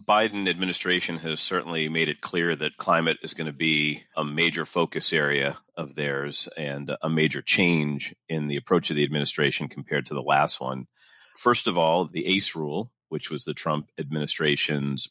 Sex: male